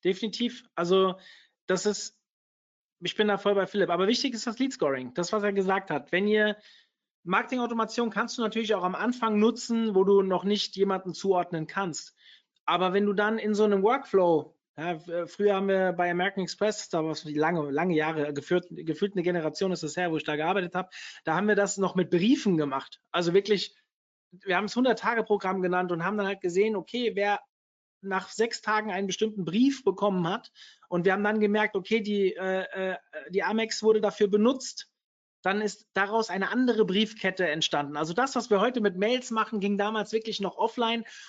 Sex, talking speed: male, 190 wpm